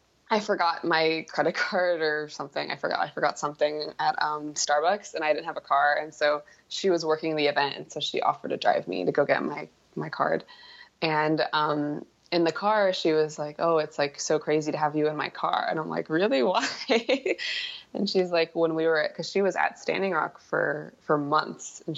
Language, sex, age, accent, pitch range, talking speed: English, female, 20-39, American, 145-165 Hz, 225 wpm